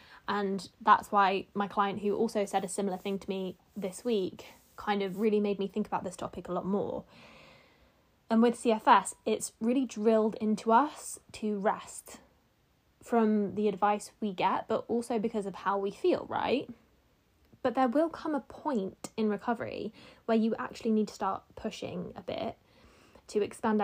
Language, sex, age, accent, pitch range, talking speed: English, female, 10-29, British, 195-225 Hz, 175 wpm